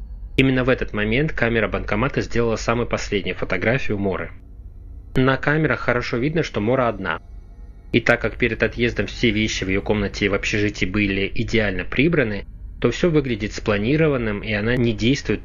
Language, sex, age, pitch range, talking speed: Russian, male, 20-39, 95-120 Hz, 165 wpm